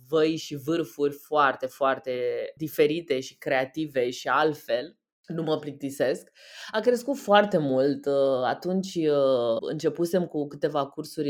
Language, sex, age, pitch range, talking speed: Romanian, female, 20-39, 135-180 Hz, 115 wpm